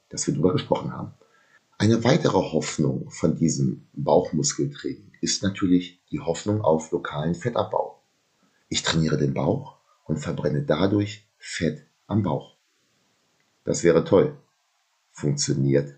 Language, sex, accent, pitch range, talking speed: German, male, German, 75-110 Hz, 120 wpm